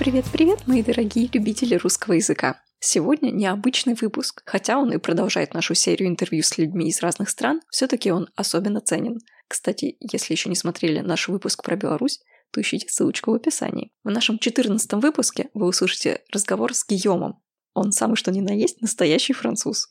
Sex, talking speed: female, 170 wpm